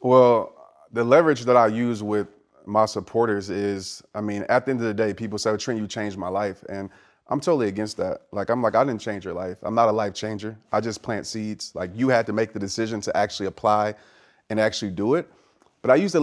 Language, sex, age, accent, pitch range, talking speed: English, male, 30-49, American, 105-120 Hz, 240 wpm